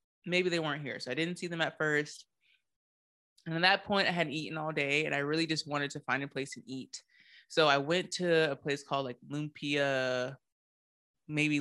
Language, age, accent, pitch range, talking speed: English, 20-39, American, 135-165 Hz, 210 wpm